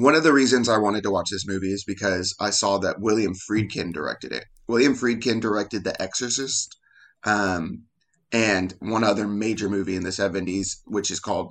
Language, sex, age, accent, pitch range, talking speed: English, male, 30-49, American, 95-115 Hz, 190 wpm